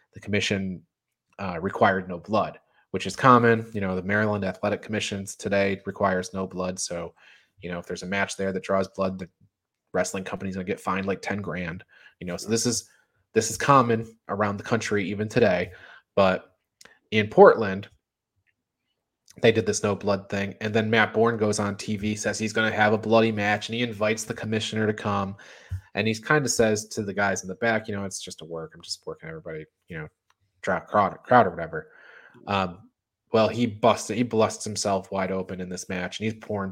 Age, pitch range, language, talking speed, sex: 20-39, 95-115 Hz, English, 205 wpm, male